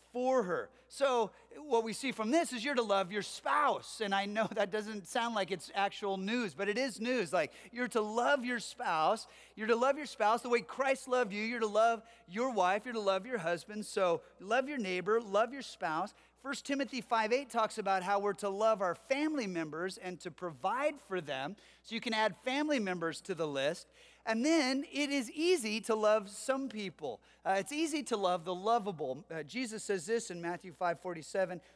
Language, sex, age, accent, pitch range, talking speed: English, male, 30-49, American, 190-255 Hz, 210 wpm